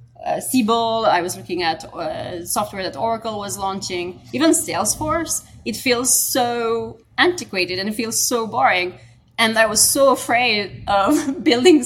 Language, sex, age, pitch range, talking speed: English, female, 20-39, 180-225 Hz, 150 wpm